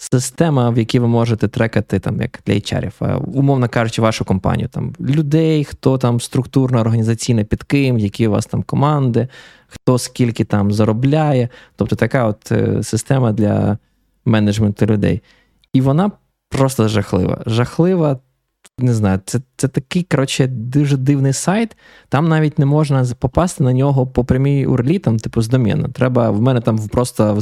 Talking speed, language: 155 wpm, Ukrainian